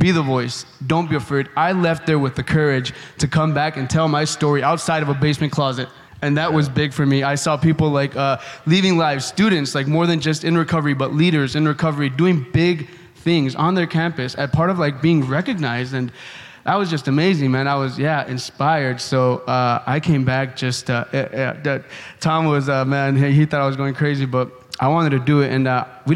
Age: 20-39